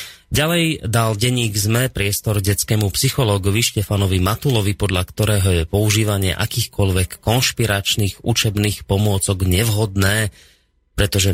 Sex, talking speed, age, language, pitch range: male, 100 wpm, 30-49, Slovak, 95-115 Hz